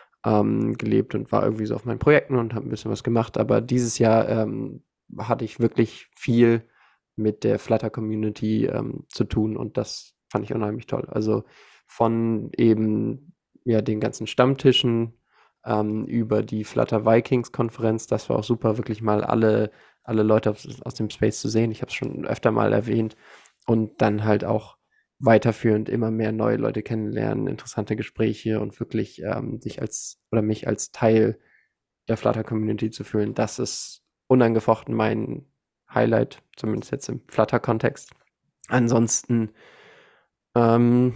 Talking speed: 155 wpm